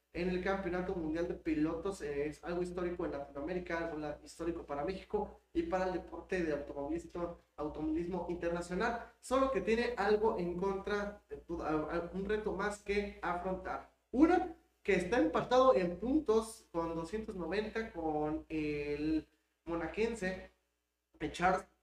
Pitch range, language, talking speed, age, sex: 160-215 Hz, Spanish, 135 wpm, 30-49, male